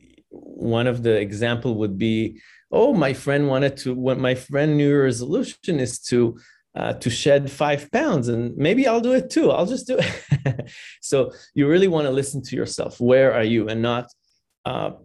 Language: English